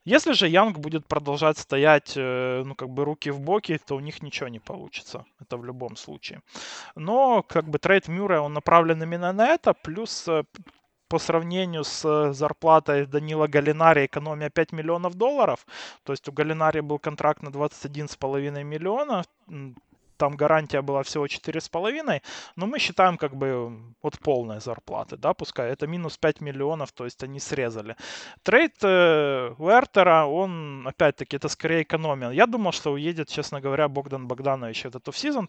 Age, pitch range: 20-39, 135-165 Hz